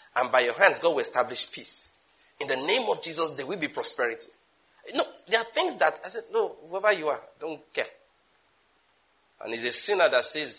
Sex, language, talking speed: male, English, 205 wpm